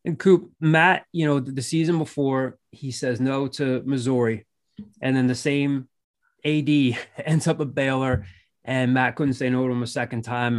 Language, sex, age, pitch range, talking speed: English, male, 20-39, 125-145 Hz, 180 wpm